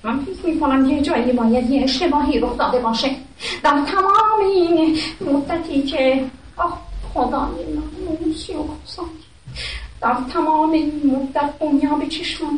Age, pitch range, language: 30-49, 250-325 Hz, Persian